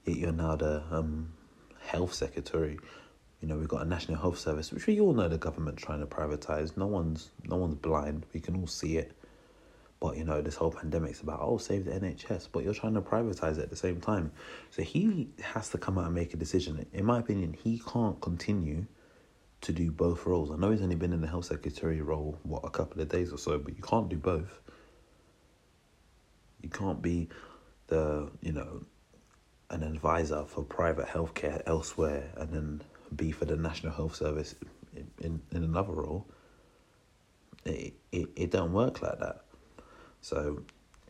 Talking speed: 185 wpm